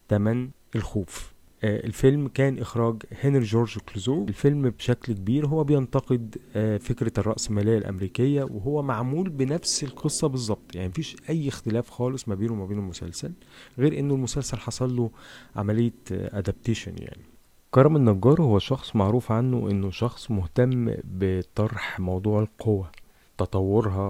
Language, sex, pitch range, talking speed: Arabic, male, 100-125 Hz, 130 wpm